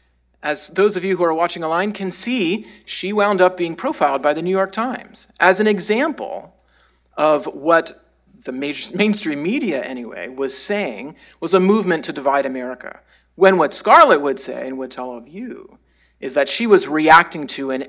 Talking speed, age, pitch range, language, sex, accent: 180 wpm, 40-59, 135-195 Hz, English, male, American